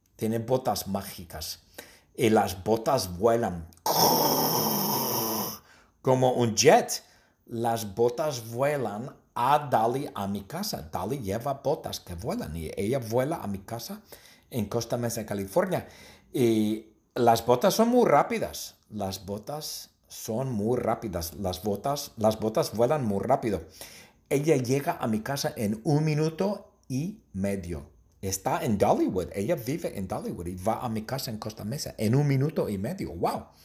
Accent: Spanish